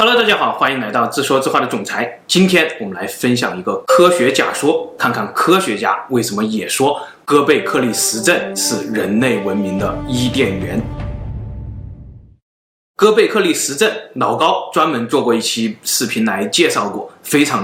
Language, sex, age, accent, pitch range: Chinese, male, 20-39, native, 105-165 Hz